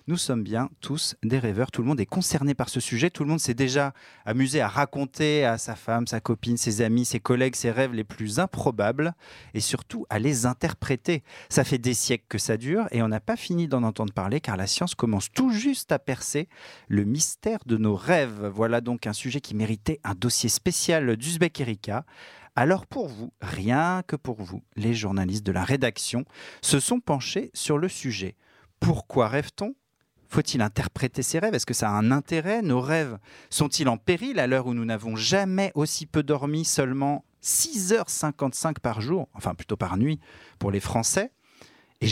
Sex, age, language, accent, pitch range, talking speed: male, 40-59, French, French, 115-155 Hz, 195 wpm